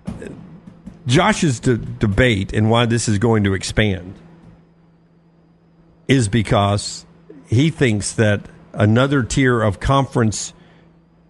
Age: 50-69